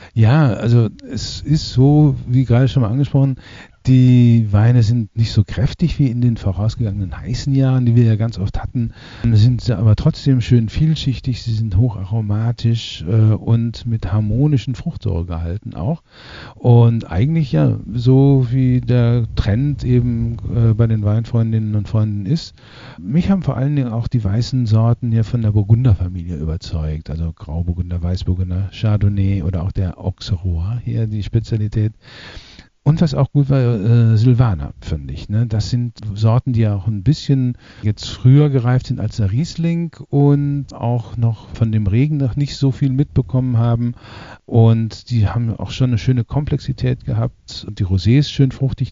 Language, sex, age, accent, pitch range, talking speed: German, male, 50-69, German, 105-130 Hz, 165 wpm